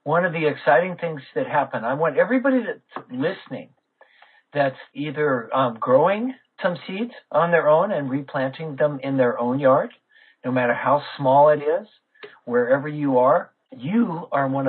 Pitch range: 135-170 Hz